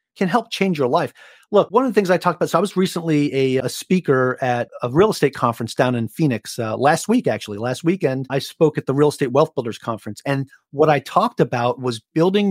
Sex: male